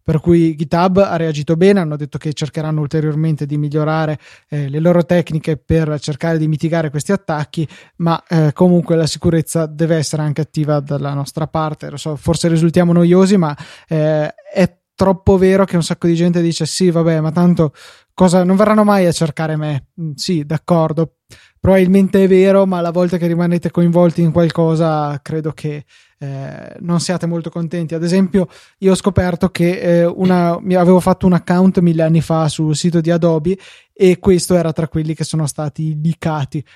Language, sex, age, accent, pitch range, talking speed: Italian, male, 20-39, native, 155-180 Hz, 180 wpm